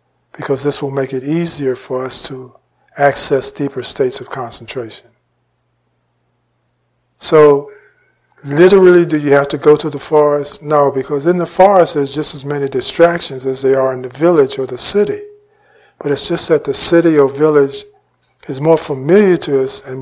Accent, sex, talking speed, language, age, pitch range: American, male, 170 wpm, English, 50-69, 125-155 Hz